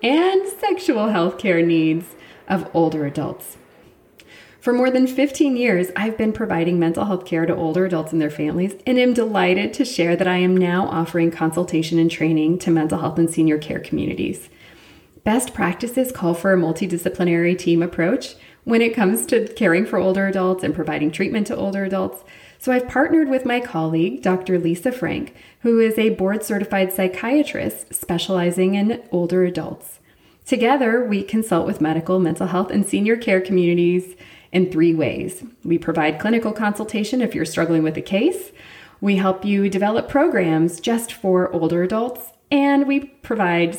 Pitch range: 170-225 Hz